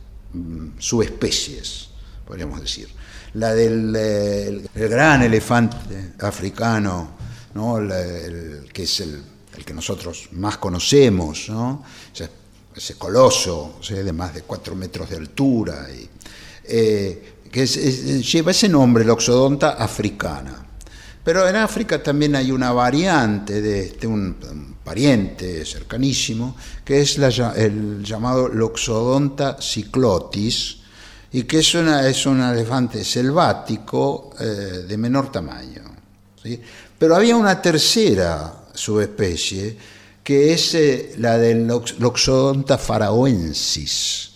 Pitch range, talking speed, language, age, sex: 100-130 Hz, 125 wpm, Spanish, 60-79, male